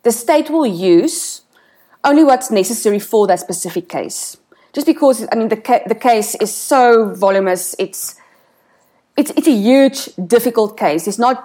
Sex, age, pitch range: female, 30-49, 185-245 Hz